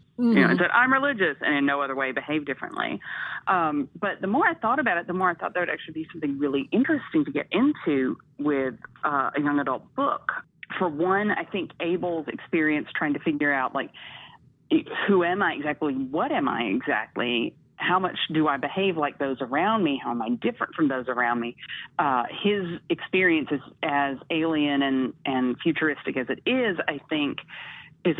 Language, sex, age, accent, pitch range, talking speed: English, female, 40-59, American, 145-195 Hz, 190 wpm